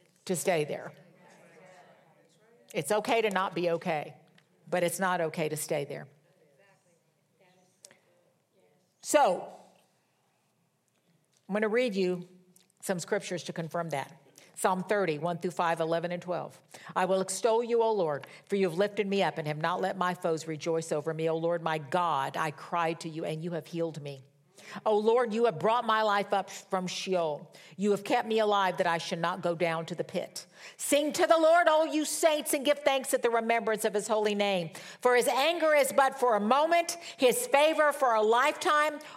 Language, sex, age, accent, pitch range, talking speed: English, female, 50-69, American, 175-245 Hz, 190 wpm